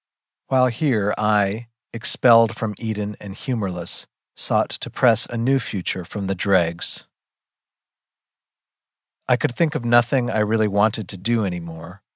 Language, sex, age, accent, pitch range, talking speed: English, male, 40-59, American, 100-135 Hz, 140 wpm